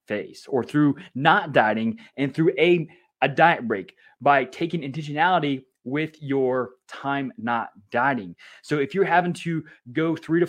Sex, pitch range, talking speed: male, 130-165 Hz, 155 wpm